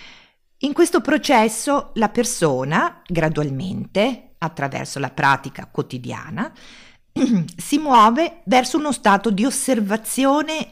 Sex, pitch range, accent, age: female, 150-235 Hz, native, 50-69